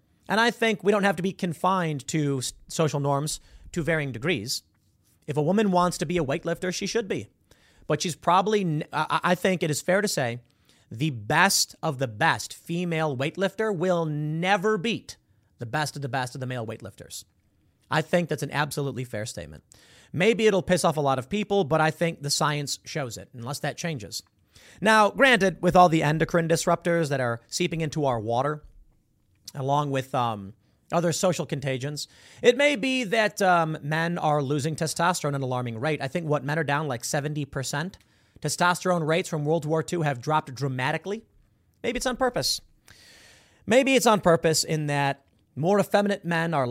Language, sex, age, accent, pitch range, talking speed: English, male, 30-49, American, 125-180 Hz, 185 wpm